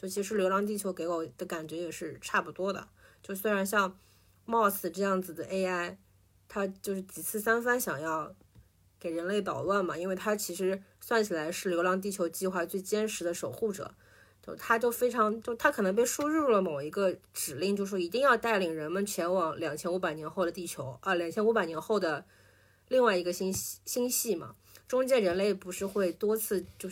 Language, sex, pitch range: Chinese, female, 165-205 Hz